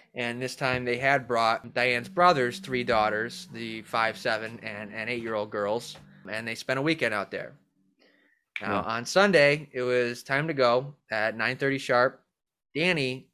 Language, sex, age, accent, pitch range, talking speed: English, male, 20-39, American, 115-145 Hz, 165 wpm